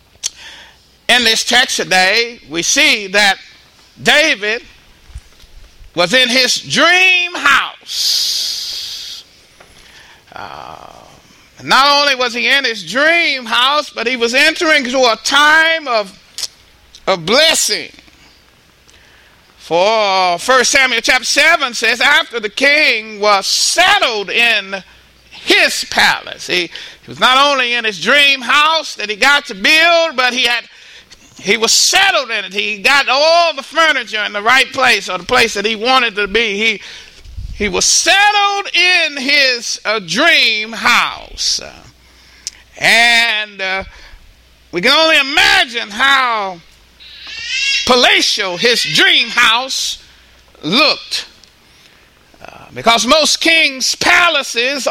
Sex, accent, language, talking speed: male, American, English, 125 wpm